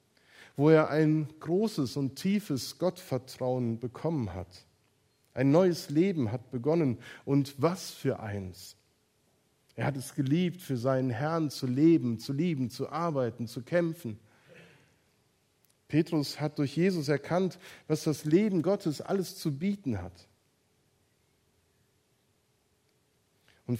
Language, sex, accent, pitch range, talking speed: German, male, German, 125-170 Hz, 120 wpm